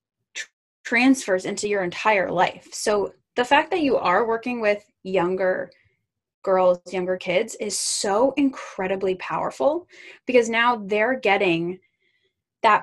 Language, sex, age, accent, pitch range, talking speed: English, female, 10-29, American, 190-255 Hz, 120 wpm